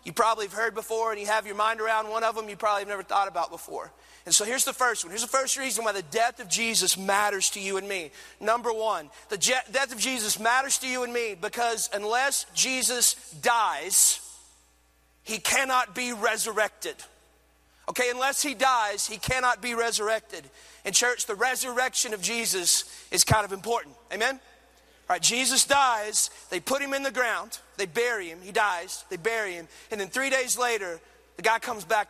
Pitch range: 205-255 Hz